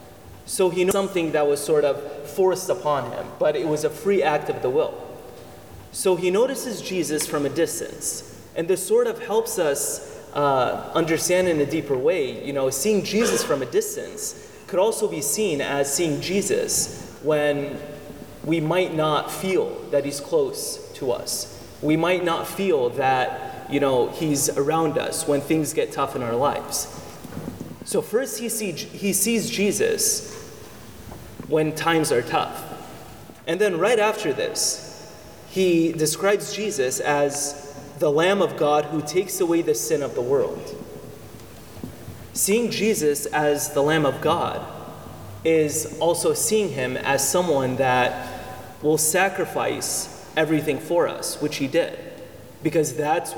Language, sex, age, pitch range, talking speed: English, male, 30-49, 145-215 Hz, 150 wpm